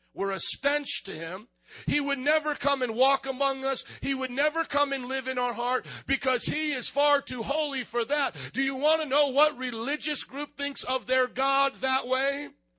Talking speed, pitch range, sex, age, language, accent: 205 wpm, 235-285 Hz, male, 50-69, English, American